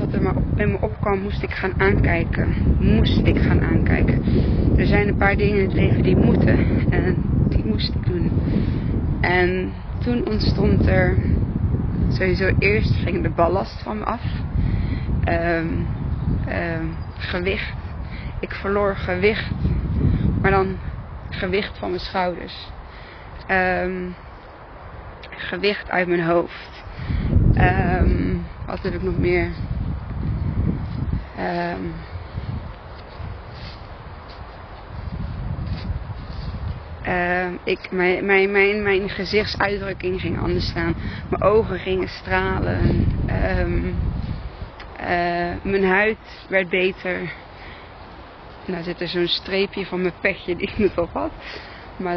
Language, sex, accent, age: Dutch, female, Dutch, 20-39